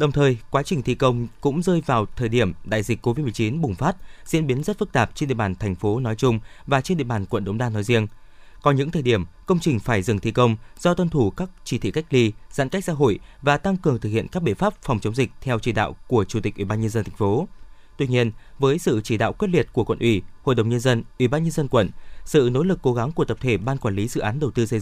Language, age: Vietnamese, 20-39